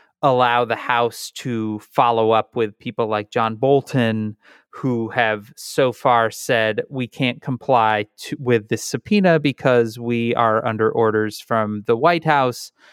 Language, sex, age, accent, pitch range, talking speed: English, male, 30-49, American, 110-135 Hz, 145 wpm